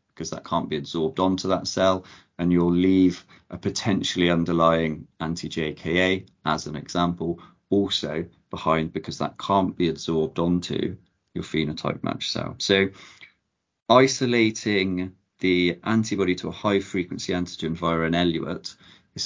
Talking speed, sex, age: 135 wpm, male, 30-49